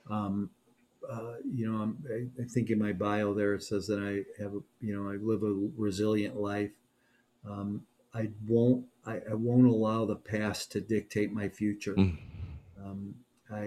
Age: 40-59